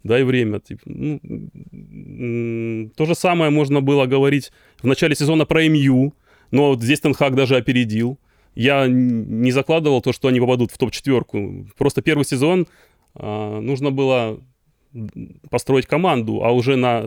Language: Russian